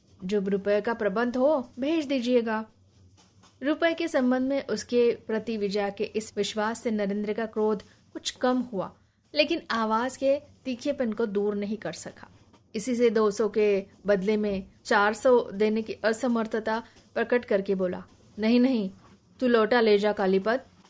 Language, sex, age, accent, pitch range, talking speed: Hindi, female, 20-39, native, 200-245 Hz, 155 wpm